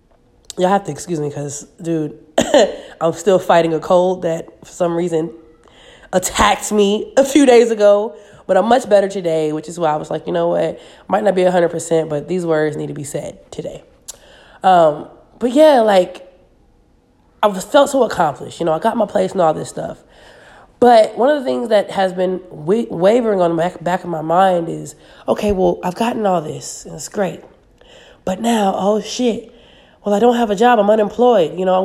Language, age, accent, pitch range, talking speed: English, 20-39, American, 165-205 Hz, 200 wpm